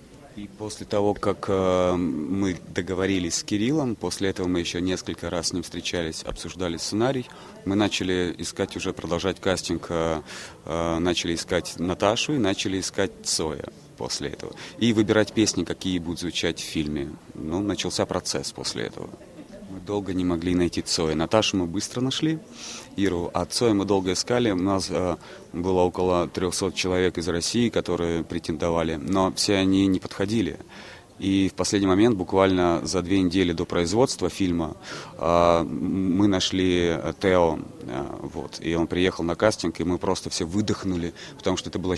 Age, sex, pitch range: 30-49, male, 85-100 Hz